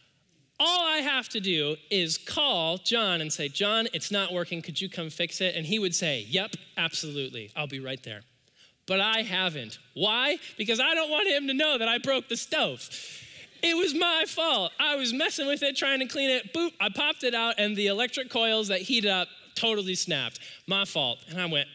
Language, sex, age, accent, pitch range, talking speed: English, male, 20-39, American, 170-270 Hz, 210 wpm